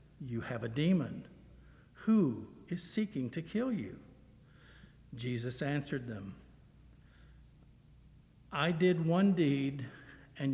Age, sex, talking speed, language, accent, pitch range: 60-79, male, 100 wpm, English, American, 130-170 Hz